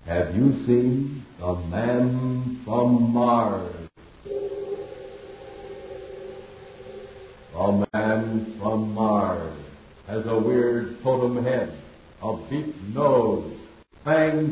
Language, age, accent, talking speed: English, 60-79, American, 85 wpm